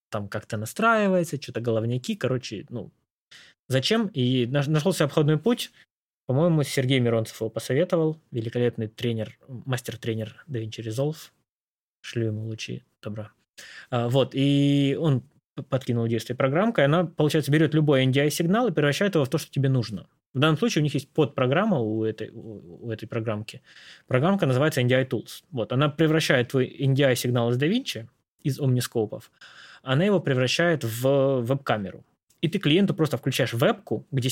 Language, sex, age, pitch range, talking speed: Russian, male, 20-39, 115-155 Hz, 145 wpm